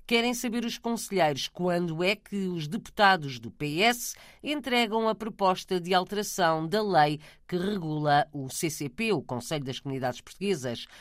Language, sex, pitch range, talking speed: Portuguese, female, 145-205 Hz, 145 wpm